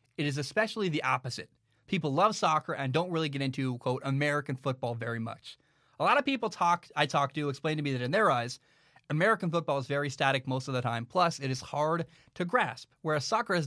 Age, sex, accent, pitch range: 30-49, male, American, 130-170 Hz